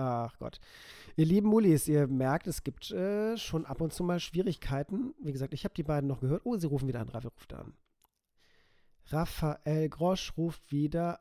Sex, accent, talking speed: male, German, 195 wpm